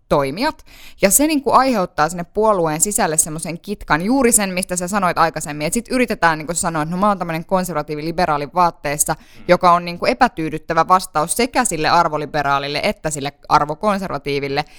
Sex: female